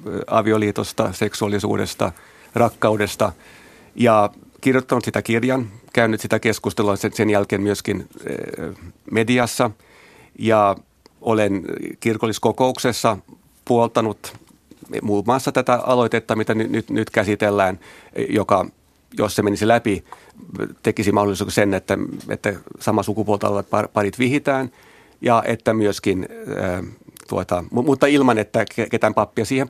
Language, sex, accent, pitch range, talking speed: Finnish, male, native, 100-120 Hz, 105 wpm